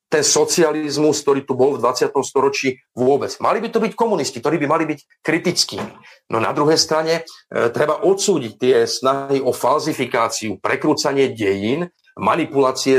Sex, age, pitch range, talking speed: male, 40-59, 130-200 Hz, 150 wpm